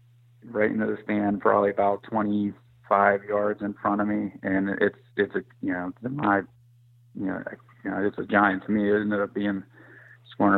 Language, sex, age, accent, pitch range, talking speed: English, male, 30-49, American, 100-120 Hz, 175 wpm